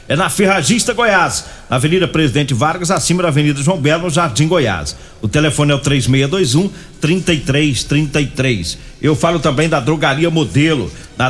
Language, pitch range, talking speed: Portuguese, 145-185 Hz, 155 wpm